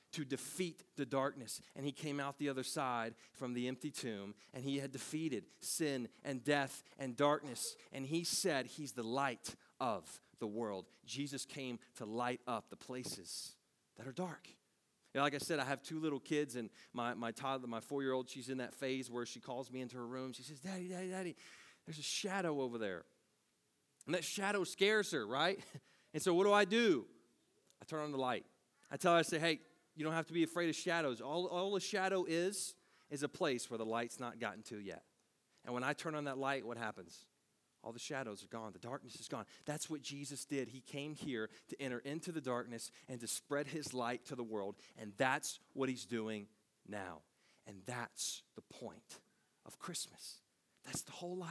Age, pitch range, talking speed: 30-49, 125-160 Hz, 205 wpm